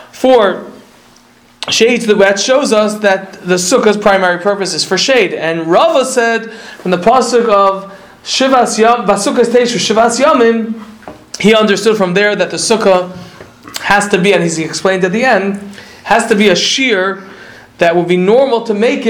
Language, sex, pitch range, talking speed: English, male, 190-240 Hz, 170 wpm